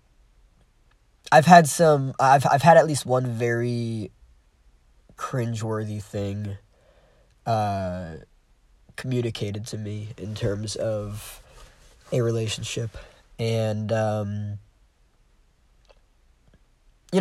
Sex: male